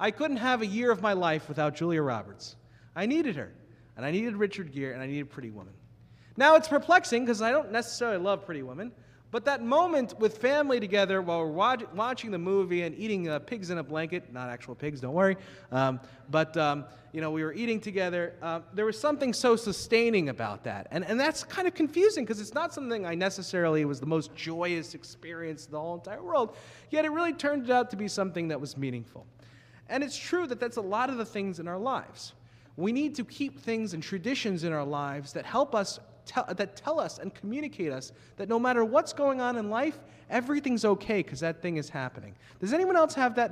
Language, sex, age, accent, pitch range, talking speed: English, male, 30-49, American, 140-235 Hz, 220 wpm